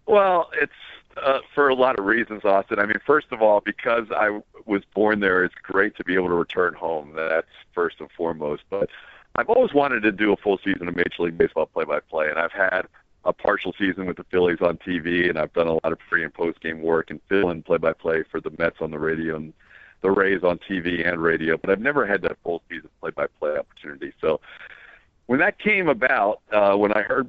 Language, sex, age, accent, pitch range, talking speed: English, male, 50-69, American, 80-105 Hz, 220 wpm